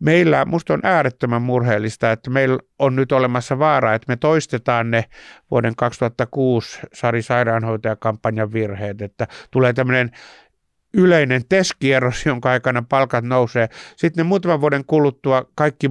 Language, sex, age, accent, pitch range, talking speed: Finnish, male, 60-79, native, 110-130 Hz, 125 wpm